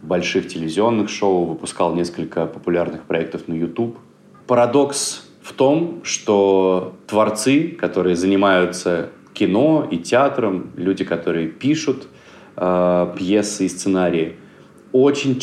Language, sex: Russian, male